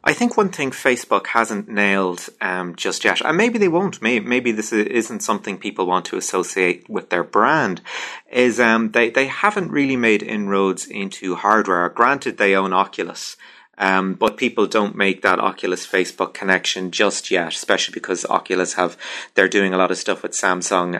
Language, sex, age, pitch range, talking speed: English, male, 30-49, 95-120 Hz, 175 wpm